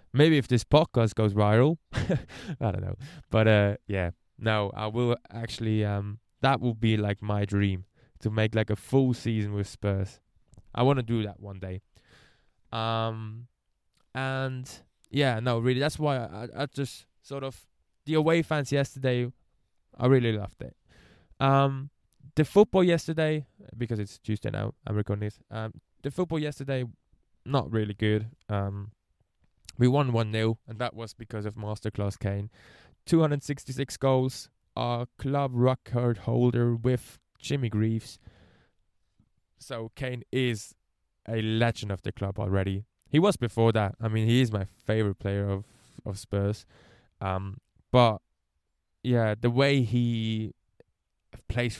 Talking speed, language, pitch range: 145 wpm, English, 105-130 Hz